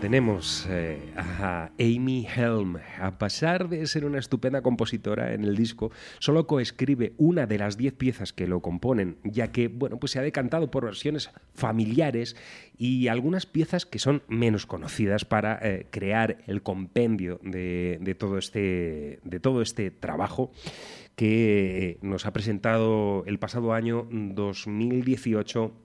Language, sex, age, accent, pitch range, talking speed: Spanish, male, 30-49, Spanish, 100-130 Hz, 135 wpm